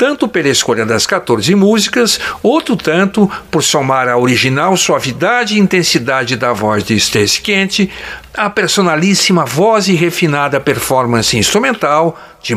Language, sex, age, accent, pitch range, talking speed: Portuguese, male, 60-79, Brazilian, 120-185 Hz, 135 wpm